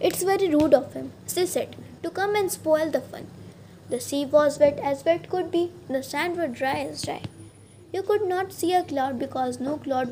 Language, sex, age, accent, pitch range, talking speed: Telugu, female, 20-39, native, 265-345 Hz, 220 wpm